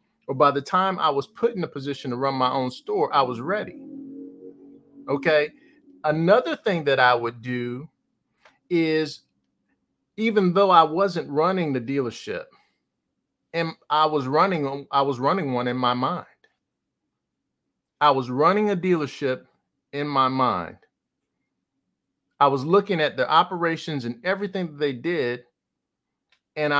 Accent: American